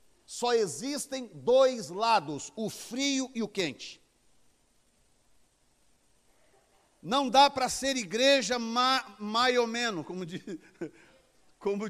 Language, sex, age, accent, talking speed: Portuguese, male, 50-69, Brazilian, 95 wpm